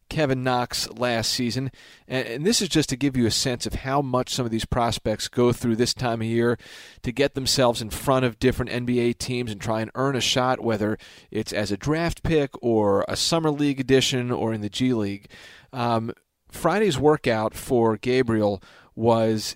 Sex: male